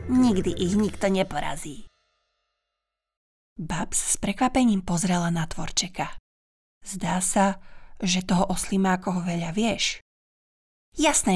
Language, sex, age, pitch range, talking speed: Slovak, female, 20-39, 180-235 Hz, 95 wpm